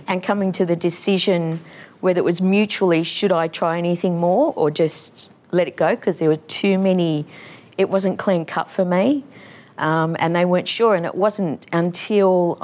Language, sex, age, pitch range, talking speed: English, female, 40-59, 165-195 Hz, 185 wpm